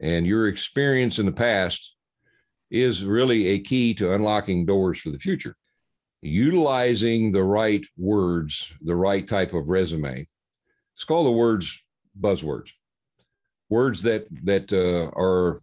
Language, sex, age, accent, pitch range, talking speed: English, male, 60-79, American, 85-110 Hz, 135 wpm